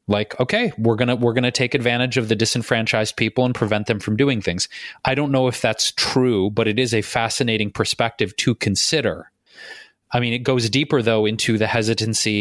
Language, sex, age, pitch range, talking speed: English, male, 30-49, 110-130 Hz, 200 wpm